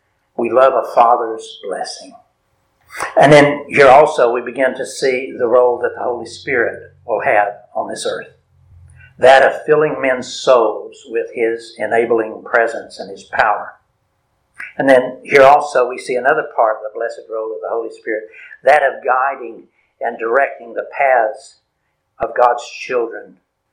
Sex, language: male, English